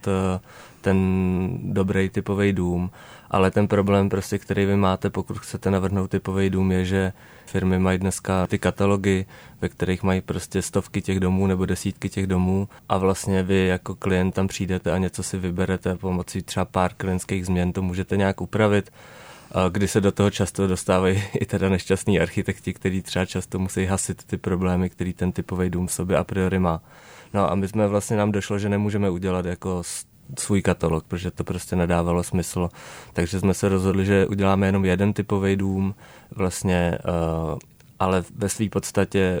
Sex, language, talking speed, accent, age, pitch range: male, Czech, 170 wpm, native, 20-39, 90-100 Hz